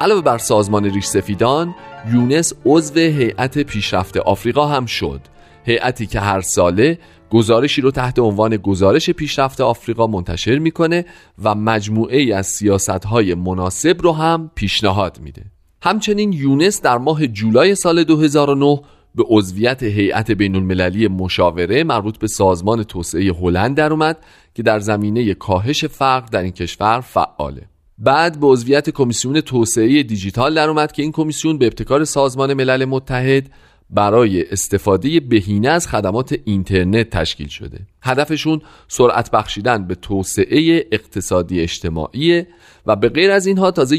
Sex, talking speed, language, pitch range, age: male, 135 wpm, Persian, 100-145 Hz, 40-59